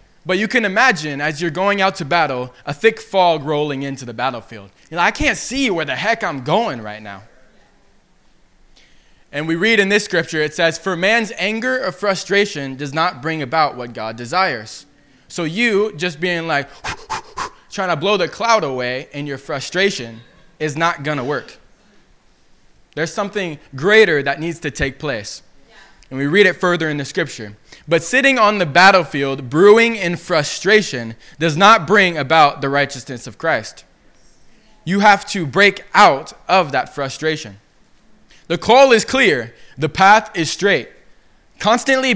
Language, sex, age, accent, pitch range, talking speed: English, male, 20-39, American, 140-205 Hz, 165 wpm